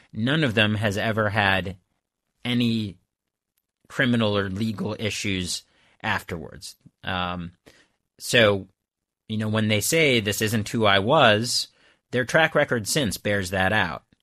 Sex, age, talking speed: male, 30-49, 130 wpm